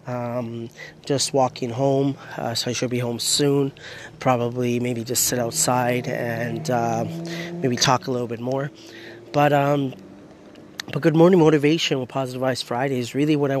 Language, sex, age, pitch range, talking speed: English, male, 30-49, 120-135 Hz, 170 wpm